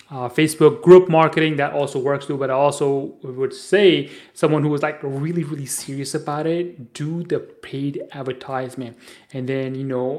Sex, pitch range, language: male, 130-175 Hz, English